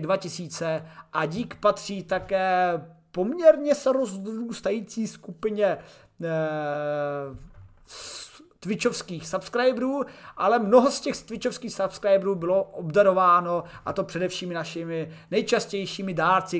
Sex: male